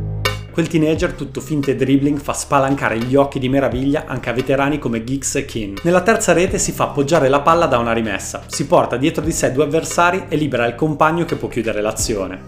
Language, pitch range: Italian, 120-160 Hz